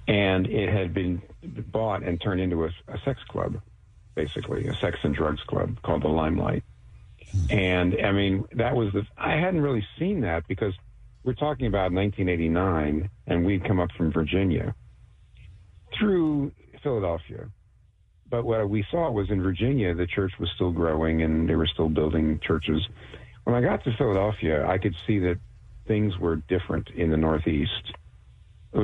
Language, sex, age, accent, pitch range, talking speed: English, male, 50-69, American, 80-110 Hz, 165 wpm